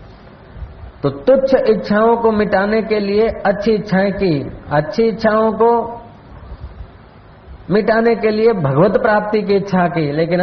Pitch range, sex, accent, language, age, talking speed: 145-210 Hz, male, native, Hindi, 50-69, 120 wpm